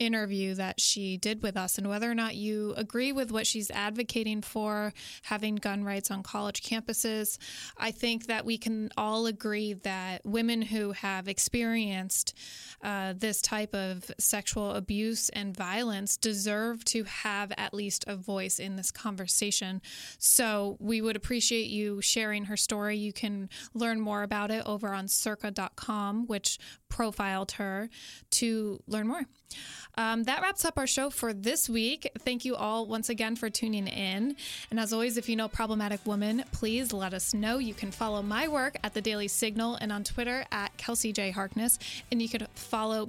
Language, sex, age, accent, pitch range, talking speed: English, female, 20-39, American, 205-230 Hz, 175 wpm